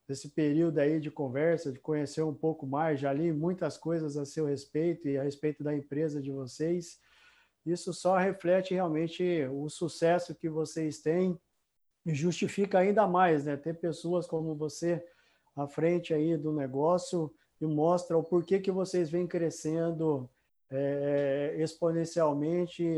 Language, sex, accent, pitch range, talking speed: Portuguese, male, Brazilian, 150-180 Hz, 150 wpm